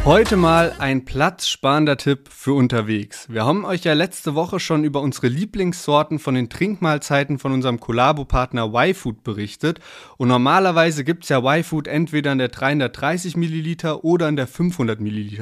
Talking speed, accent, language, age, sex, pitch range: 150 wpm, German, German, 30-49, male, 130-170 Hz